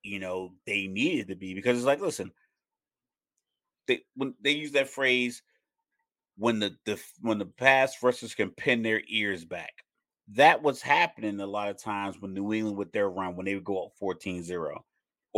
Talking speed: 180 wpm